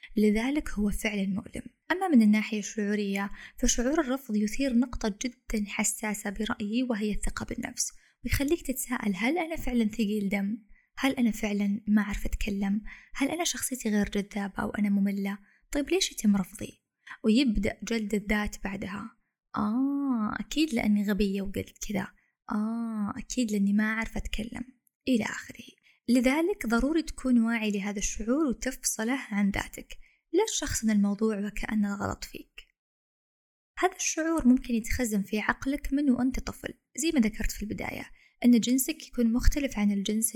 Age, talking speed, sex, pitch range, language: 20-39, 145 wpm, female, 210-255 Hz, Arabic